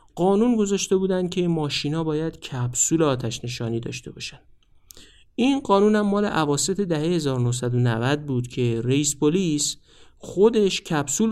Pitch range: 140-195 Hz